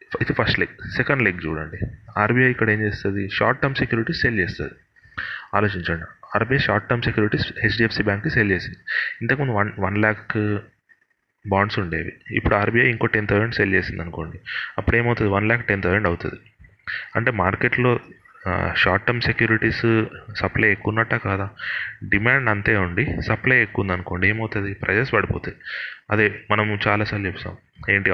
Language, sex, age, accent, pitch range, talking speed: Telugu, male, 30-49, native, 95-120 Hz, 145 wpm